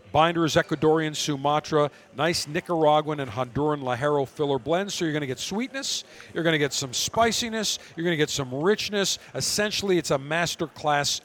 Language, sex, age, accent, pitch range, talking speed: English, male, 50-69, American, 140-175 Hz, 175 wpm